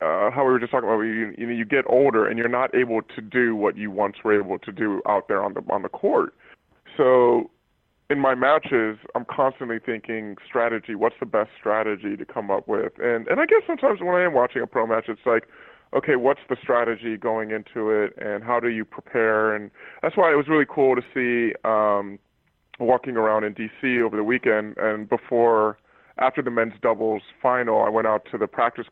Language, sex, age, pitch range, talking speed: English, female, 20-39, 110-135 Hz, 215 wpm